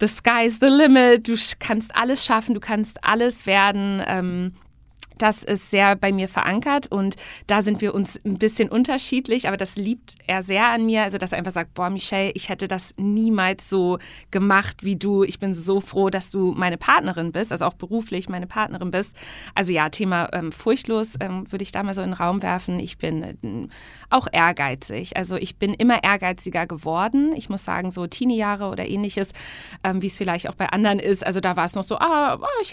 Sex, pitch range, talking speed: female, 185-230 Hz, 205 wpm